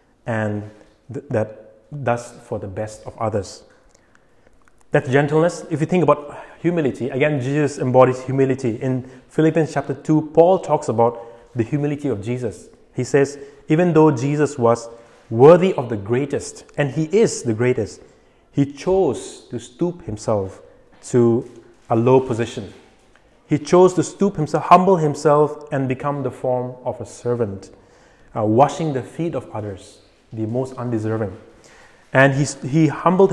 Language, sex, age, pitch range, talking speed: English, male, 30-49, 115-150 Hz, 145 wpm